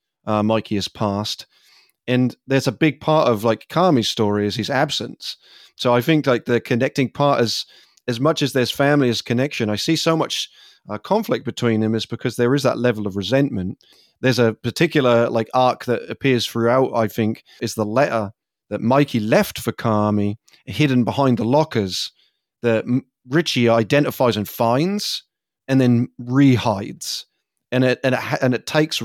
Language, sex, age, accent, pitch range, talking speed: English, male, 30-49, British, 110-135 Hz, 175 wpm